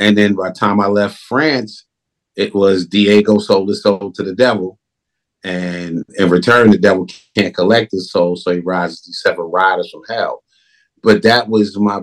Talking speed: 190 wpm